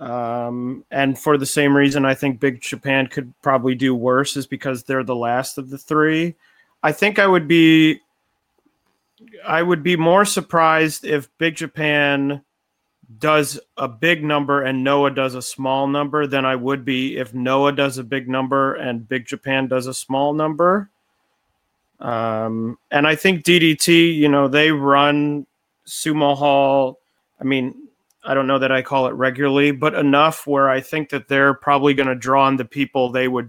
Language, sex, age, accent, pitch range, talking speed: English, male, 30-49, American, 130-150 Hz, 175 wpm